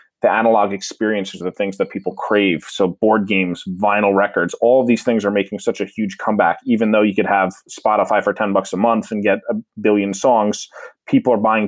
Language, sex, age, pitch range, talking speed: English, male, 20-39, 100-115 Hz, 220 wpm